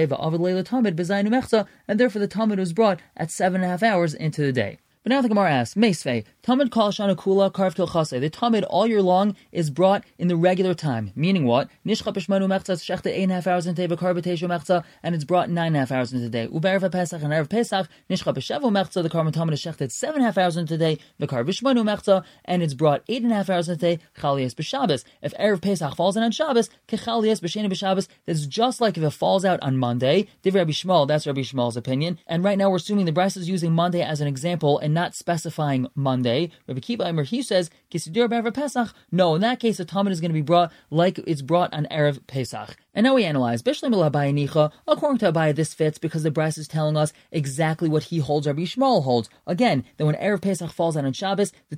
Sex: male